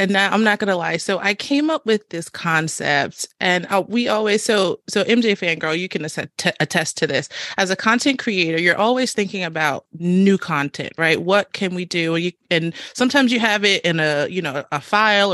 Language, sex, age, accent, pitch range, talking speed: English, female, 30-49, American, 170-230 Hz, 205 wpm